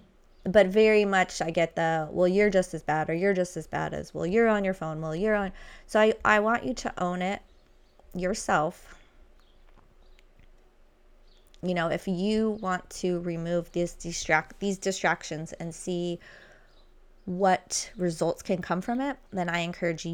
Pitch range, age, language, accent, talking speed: 170-210 Hz, 20-39, English, American, 165 wpm